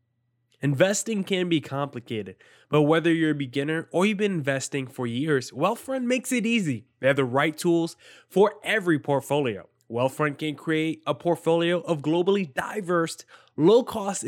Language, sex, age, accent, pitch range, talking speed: English, male, 20-39, American, 130-165 Hz, 150 wpm